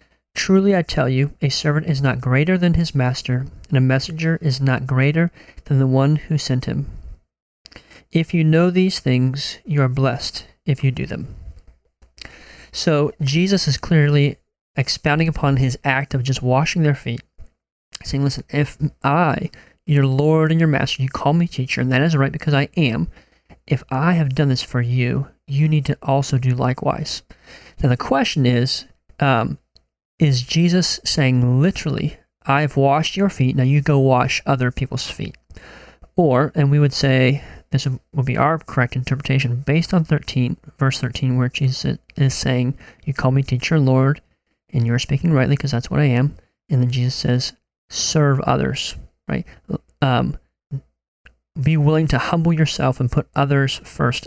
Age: 30-49